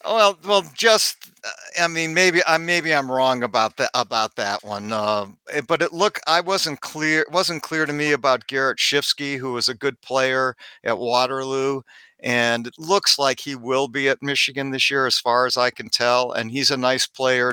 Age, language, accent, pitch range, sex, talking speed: 50-69, English, American, 115-135 Hz, male, 200 wpm